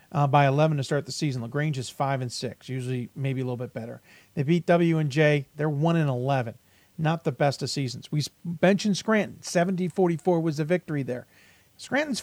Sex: male